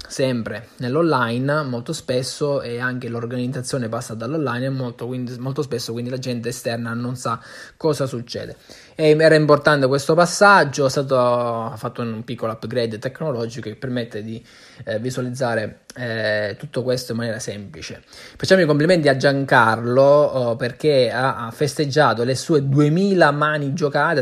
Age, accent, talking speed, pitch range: 20-39, native, 135 wpm, 120-155 Hz